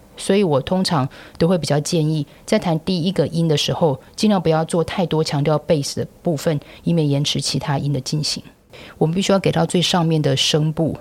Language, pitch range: Chinese, 150-180 Hz